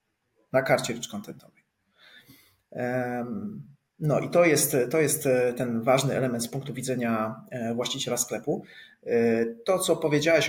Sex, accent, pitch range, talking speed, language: male, native, 125-150 Hz, 120 wpm, Polish